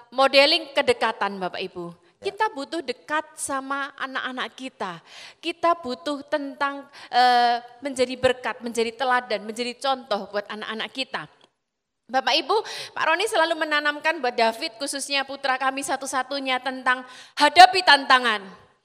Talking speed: 120 wpm